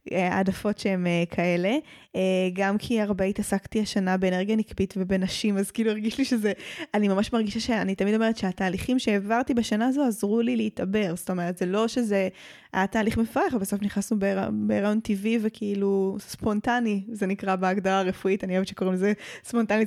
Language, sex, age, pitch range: Hebrew, female, 10-29, 185-225 Hz